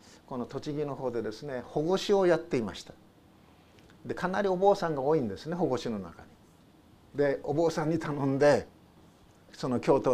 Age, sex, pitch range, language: 50-69, male, 125-165 Hz, Japanese